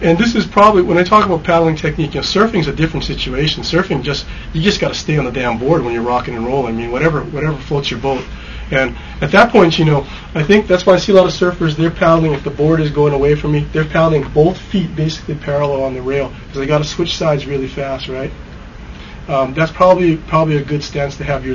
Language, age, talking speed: English, 30-49, 260 wpm